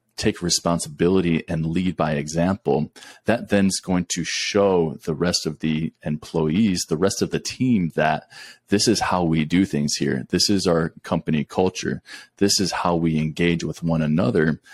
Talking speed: 175 wpm